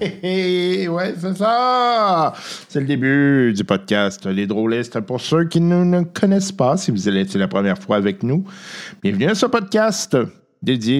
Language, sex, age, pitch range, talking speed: French, male, 50-69, 115-195 Hz, 175 wpm